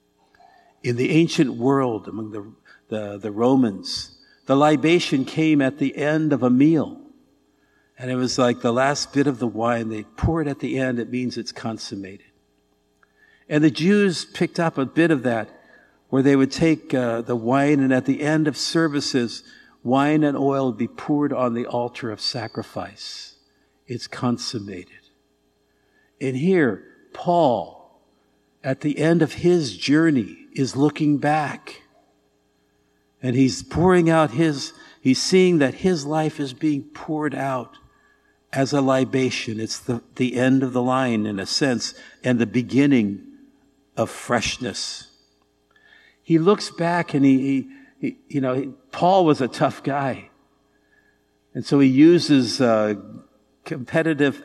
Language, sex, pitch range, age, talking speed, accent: English, male, 120-155 Hz, 60-79, 150 wpm, American